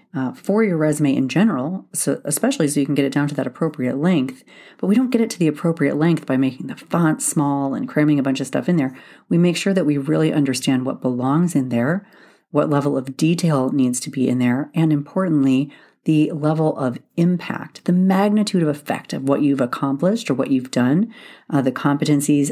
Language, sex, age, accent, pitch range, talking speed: English, female, 40-59, American, 135-185 Hz, 215 wpm